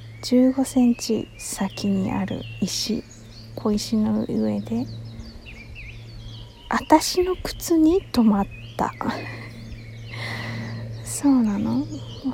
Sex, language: female, Japanese